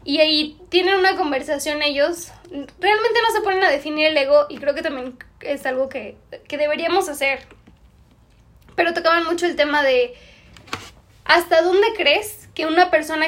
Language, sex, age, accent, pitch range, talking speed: Spanish, female, 10-29, Mexican, 265-340 Hz, 165 wpm